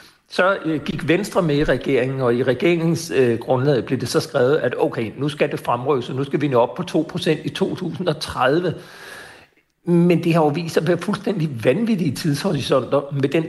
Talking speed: 190 wpm